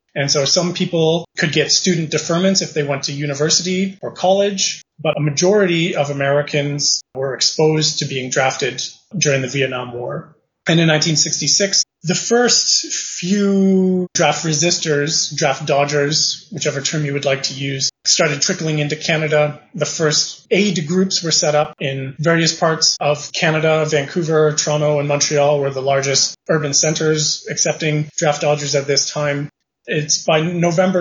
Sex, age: male, 30-49